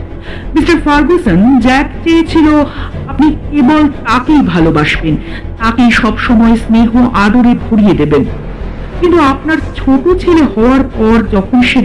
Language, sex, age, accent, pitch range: Bengali, female, 50-69, native, 210-290 Hz